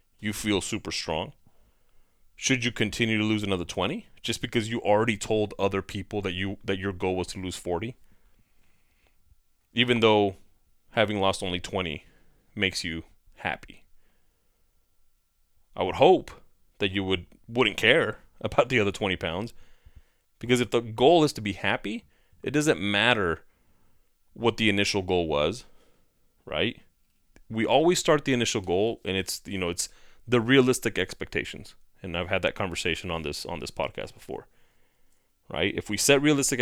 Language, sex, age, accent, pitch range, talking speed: English, male, 30-49, American, 95-115 Hz, 155 wpm